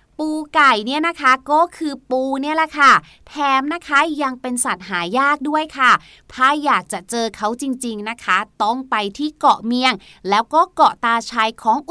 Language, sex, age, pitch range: Thai, female, 30-49, 235-315 Hz